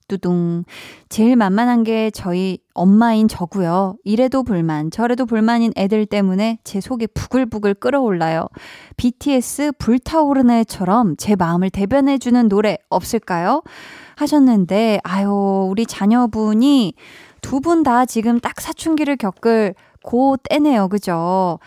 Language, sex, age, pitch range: Korean, female, 20-39, 200-270 Hz